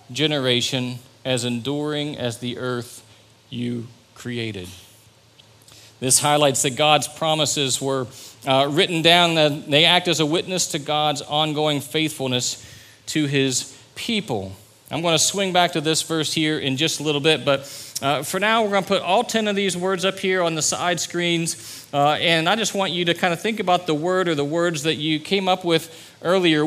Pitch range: 130-175 Hz